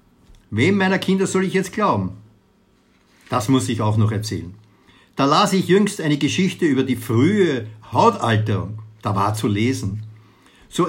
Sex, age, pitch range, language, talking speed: male, 60-79, 105-155 Hz, German, 155 wpm